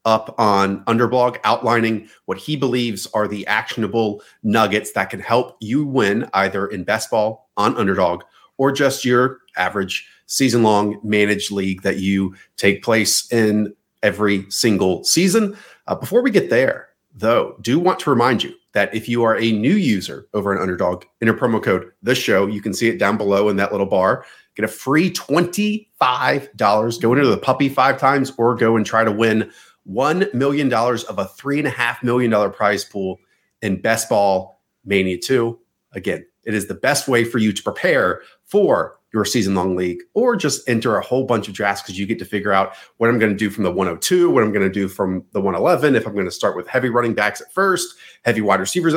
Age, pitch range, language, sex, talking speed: 30-49, 100-130 Hz, English, male, 195 wpm